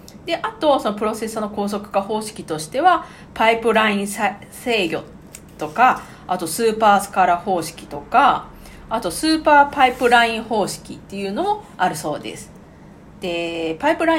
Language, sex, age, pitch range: Japanese, female, 50-69, 190-310 Hz